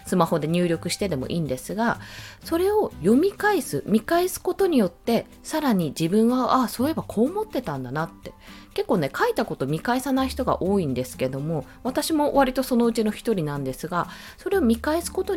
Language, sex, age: Japanese, female, 20-39